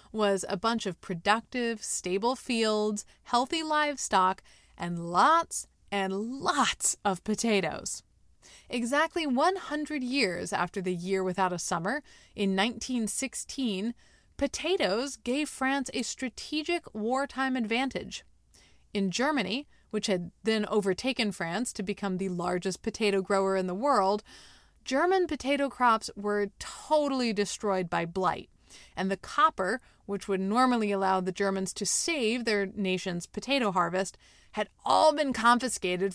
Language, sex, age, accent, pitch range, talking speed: English, female, 30-49, American, 195-265 Hz, 125 wpm